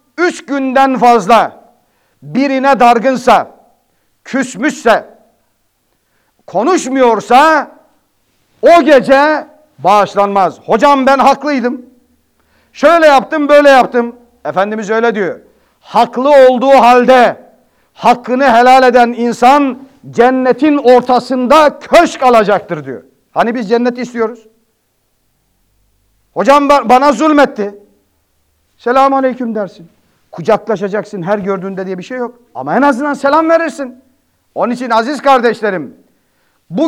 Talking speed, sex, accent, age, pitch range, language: 100 wpm, male, native, 50-69, 210-270 Hz, Turkish